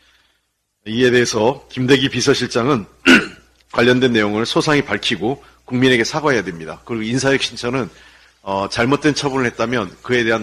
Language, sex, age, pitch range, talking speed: English, male, 40-59, 105-135 Hz, 110 wpm